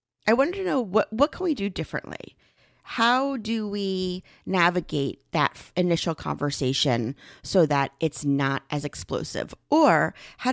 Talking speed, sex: 150 wpm, female